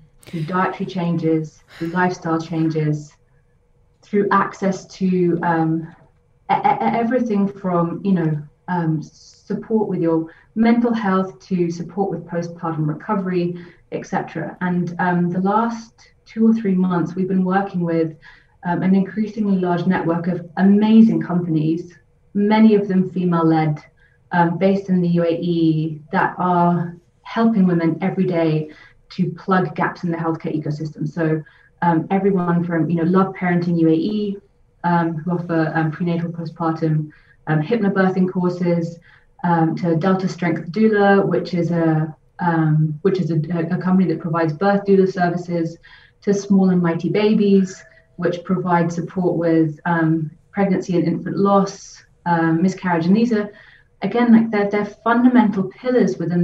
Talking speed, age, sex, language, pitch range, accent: 140 wpm, 30-49, female, English, 165-195 Hz, British